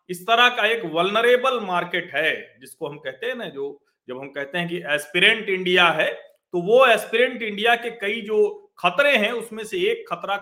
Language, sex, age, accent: Hindi, male, 40-59, native